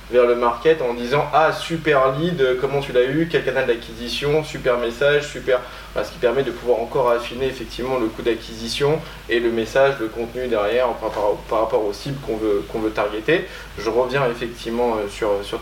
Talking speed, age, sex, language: 195 wpm, 20-39, male, French